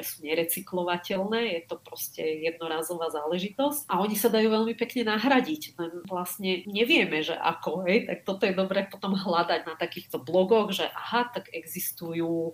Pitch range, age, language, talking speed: 165-195 Hz, 40-59, Slovak, 160 wpm